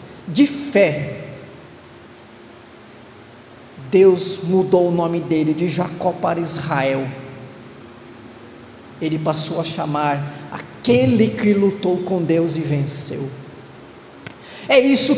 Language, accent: Portuguese, Brazilian